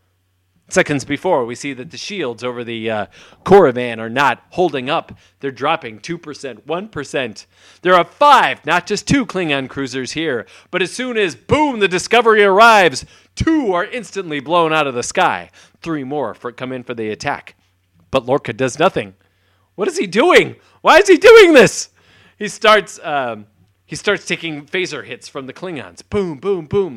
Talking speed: 180 wpm